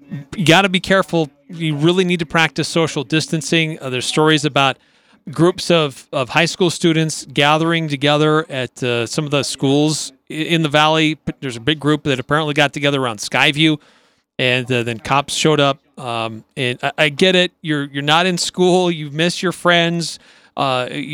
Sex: male